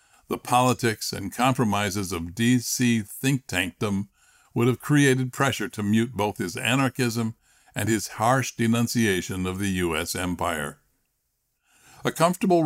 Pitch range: 100-125 Hz